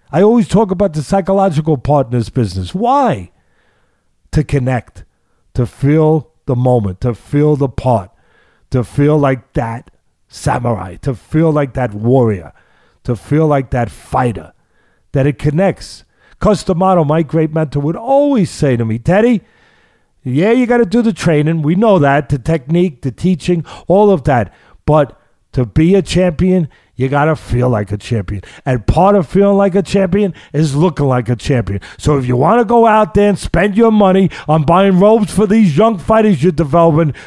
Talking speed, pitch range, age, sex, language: 180 wpm, 125-190 Hz, 50-69, male, English